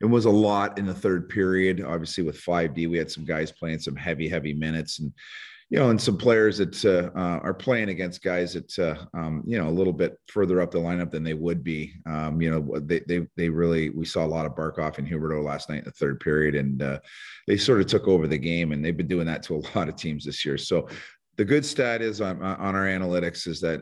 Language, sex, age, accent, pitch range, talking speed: English, male, 30-49, American, 75-90 Hz, 255 wpm